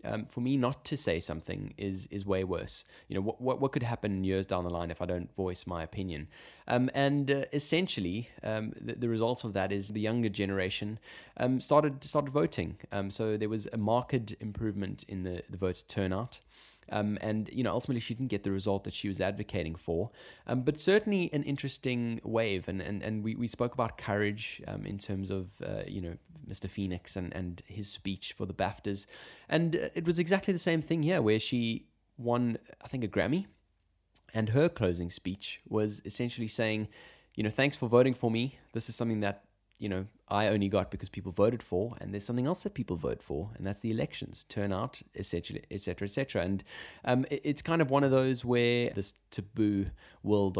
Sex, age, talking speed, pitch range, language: male, 20-39, 210 wpm, 95-120 Hz, English